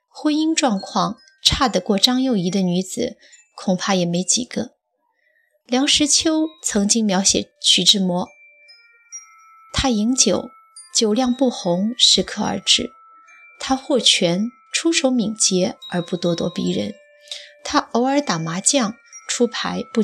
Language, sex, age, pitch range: Chinese, female, 20-39, 195-270 Hz